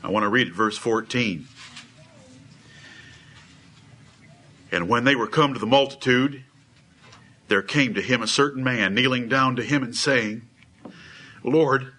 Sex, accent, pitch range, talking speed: male, American, 130-175 Hz, 140 wpm